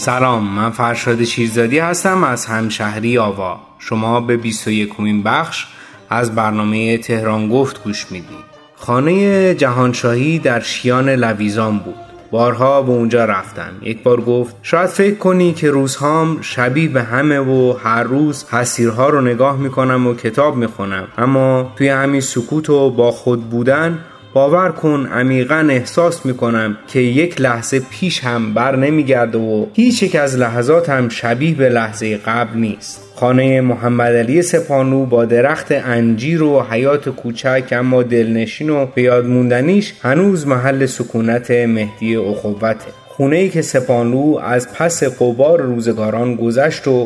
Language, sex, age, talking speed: Persian, male, 30-49, 140 wpm